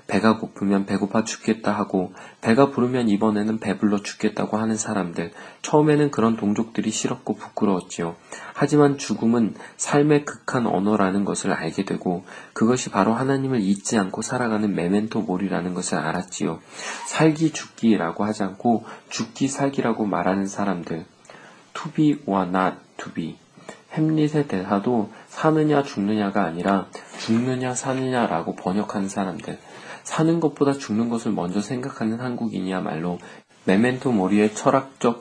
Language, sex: Korean, male